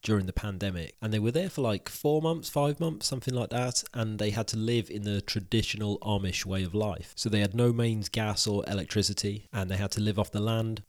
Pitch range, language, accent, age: 100-115 Hz, English, British, 30-49